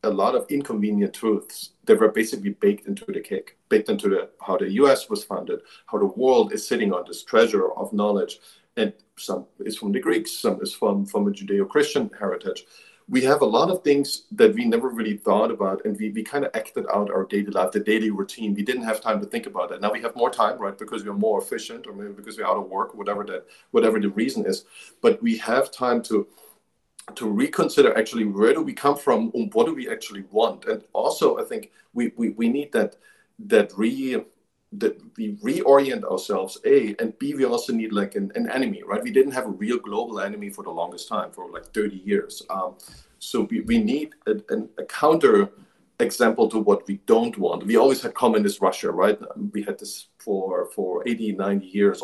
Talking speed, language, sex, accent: 215 wpm, English, male, German